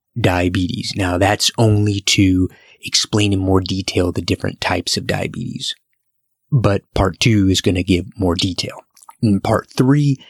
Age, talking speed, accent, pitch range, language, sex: 30-49, 150 wpm, American, 95-115 Hz, English, male